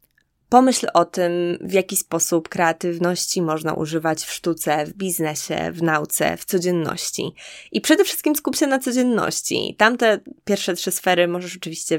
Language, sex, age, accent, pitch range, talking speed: Polish, female, 20-39, native, 165-195 Hz, 150 wpm